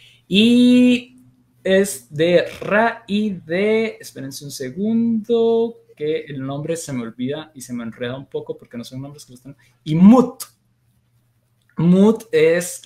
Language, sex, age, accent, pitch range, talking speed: Spanish, male, 20-39, Mexican, 125-185 Hz, 150 wpm